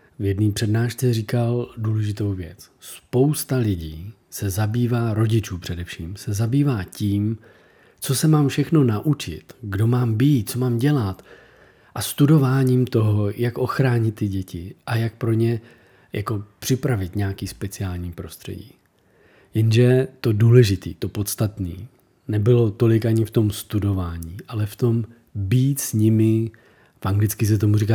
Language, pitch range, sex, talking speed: Czech, 100-125 Hz, male, 135 wpm